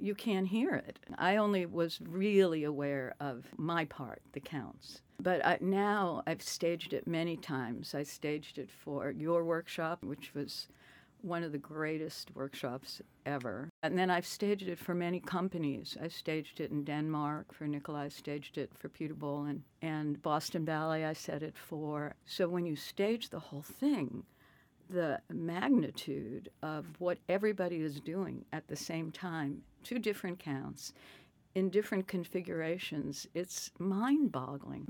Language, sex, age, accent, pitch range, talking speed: English, female, 60-79, American, 145-185 Hz, 155 wpm